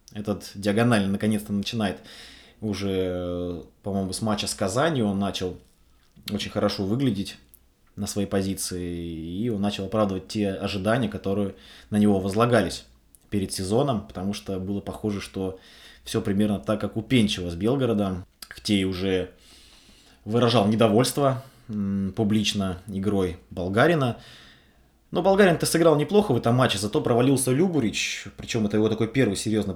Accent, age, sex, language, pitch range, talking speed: native, 20-39, male, Russian, 95-115 Hz, 135 wpm